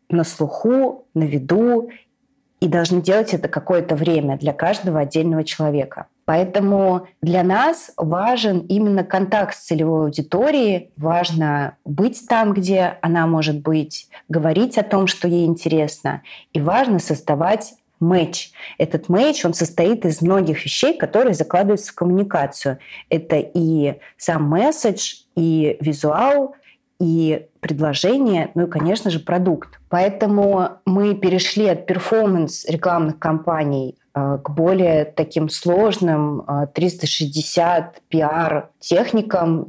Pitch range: 160-205 Hz